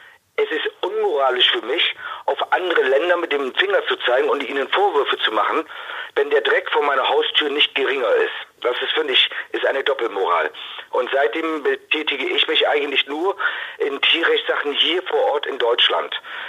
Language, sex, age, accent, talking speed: German, male, 50-69, German, 170 wpm